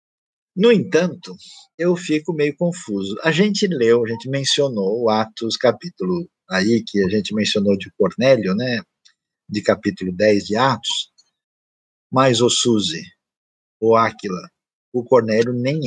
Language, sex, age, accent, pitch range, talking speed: Portuguese, male, 50-69, Brazilian, 115-160 Hz, 135 wpm